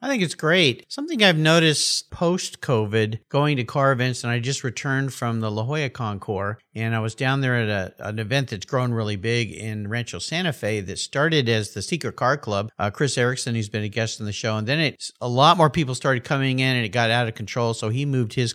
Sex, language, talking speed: male, English, 245 wpm